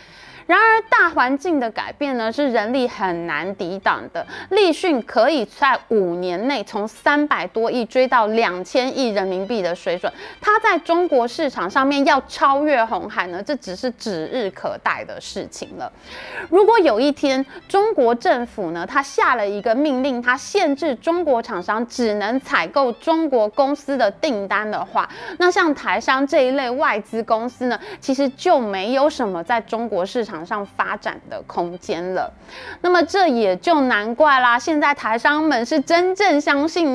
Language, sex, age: Chinese, female, 20-39